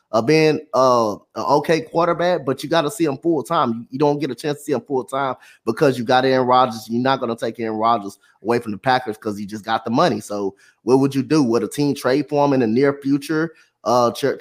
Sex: male